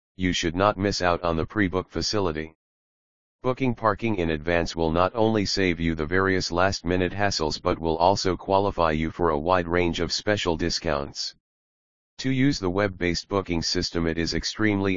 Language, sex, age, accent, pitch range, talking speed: English, male, 40-59, American, 80-95 Hz, 170 wpm